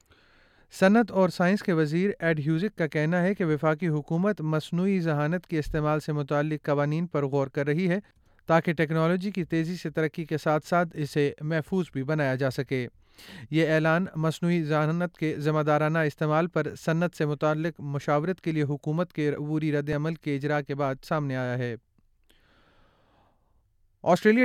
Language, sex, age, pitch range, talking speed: Urdu, male, 30-49, 150-175 Hz, 165 wpm